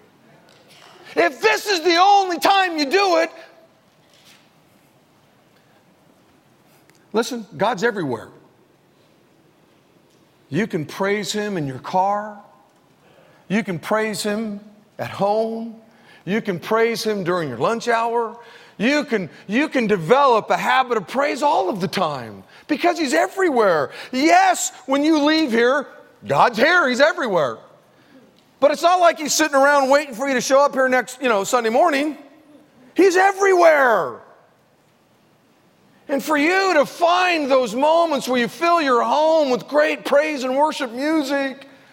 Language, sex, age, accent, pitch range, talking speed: English, male, 50-69, American, 215-305 Hz, 135 wpm